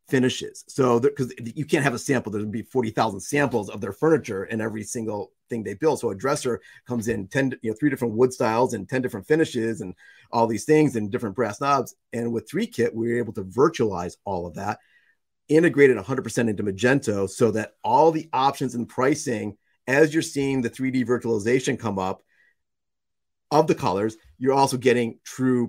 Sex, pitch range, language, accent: male, 105-130 Hz, English, American